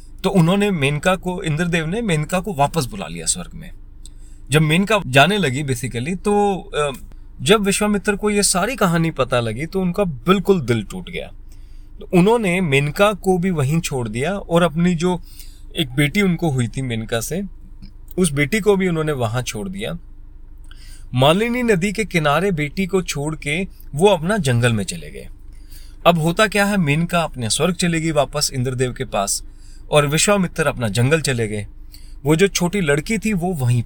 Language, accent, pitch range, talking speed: Hindi, native, 120-185 Hz, 170 wpm